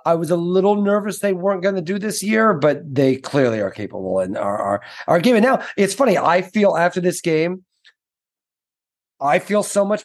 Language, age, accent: English, 30-49, American